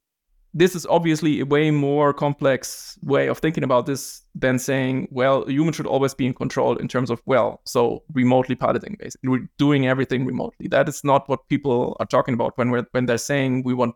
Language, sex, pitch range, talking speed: English, male, 130-150 Hz, 205 wpm